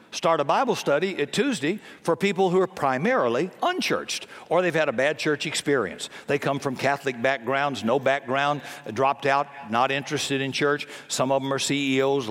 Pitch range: 135-175 Hz